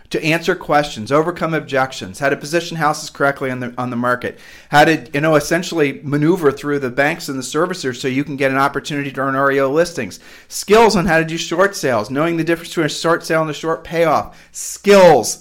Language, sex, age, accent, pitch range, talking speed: English, male, 40-59, American, 130-155 Hz, 205 wpm